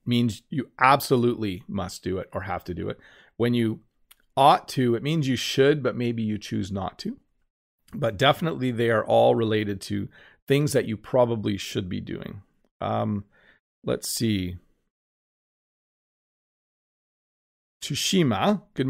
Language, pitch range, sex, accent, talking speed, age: English, 105-135 Hz, male, American, 140 wpm, 40-59